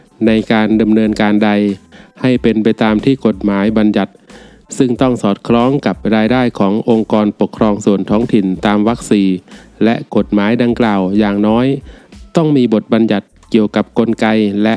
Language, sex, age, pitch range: Thai, male, 20-39, 105-115 Hz